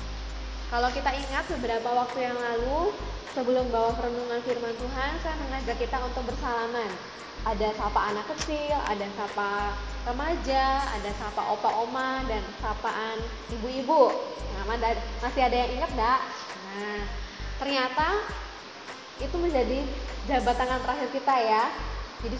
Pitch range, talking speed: 220-265 Hz, 125 wpm